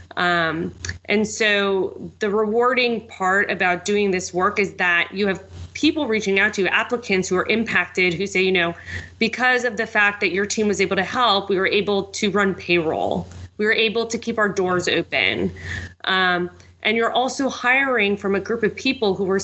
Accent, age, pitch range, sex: American, 20-39, 185-225 Hz, female